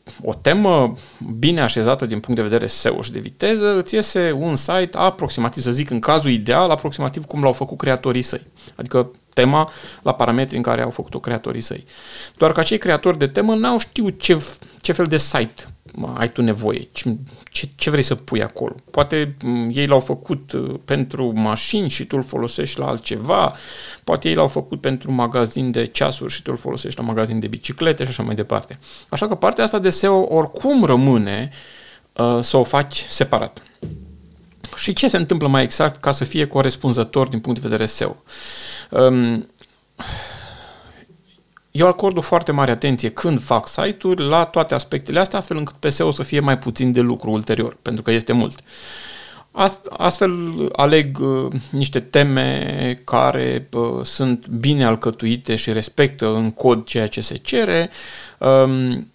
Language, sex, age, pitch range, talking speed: Romanian, male, 40-59, 120-165 Hz, 170 wpm